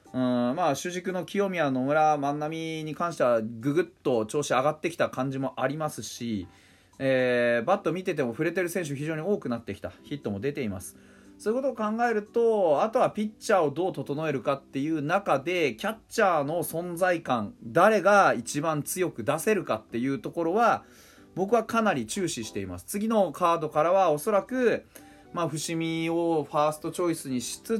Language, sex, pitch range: Japanese, male, 130-200 Hz